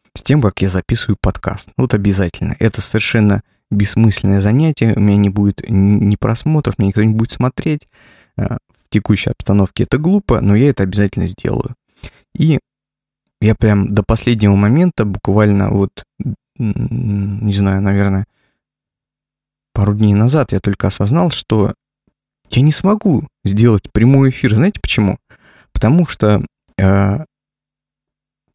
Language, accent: Russian, native